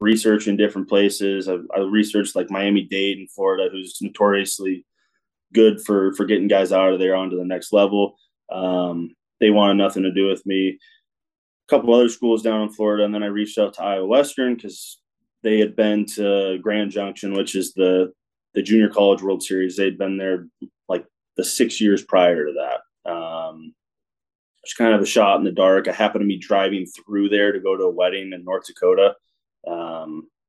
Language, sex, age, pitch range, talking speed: English, male, 20-39, 95-105 Hz, 195 wpm